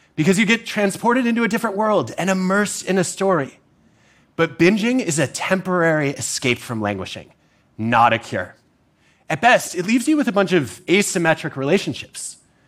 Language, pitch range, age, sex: Japanese, 135-190 Hz, 30-49, male